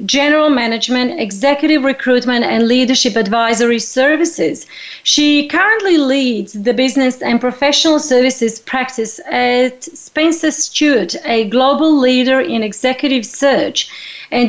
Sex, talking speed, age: female, 110 wpm, 40-59